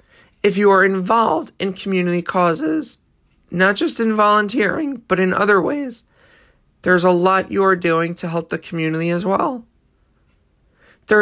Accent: American